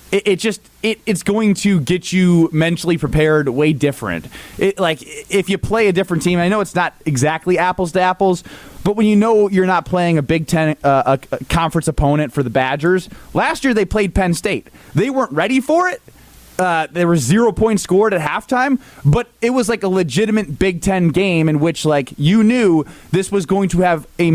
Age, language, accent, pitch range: 20-39, English, American, 160-210 Hz